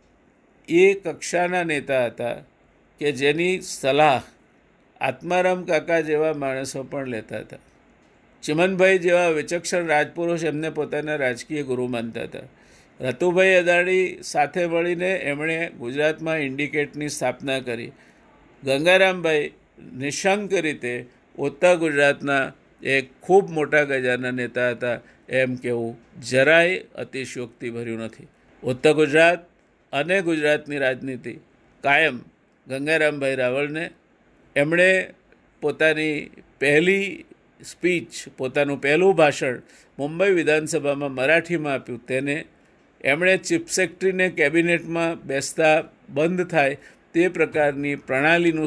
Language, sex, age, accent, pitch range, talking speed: Gujarati, male, 50-69, native, 135-170 Hz, 105 wpm